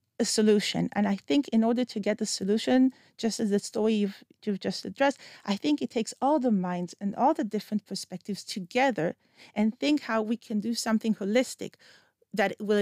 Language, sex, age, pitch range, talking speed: Hebrew, female, 40-59, 205-245 Hz, 190 wpm